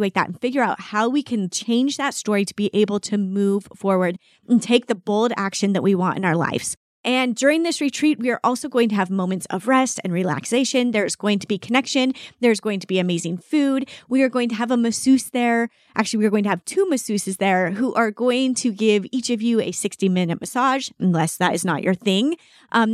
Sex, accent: female, American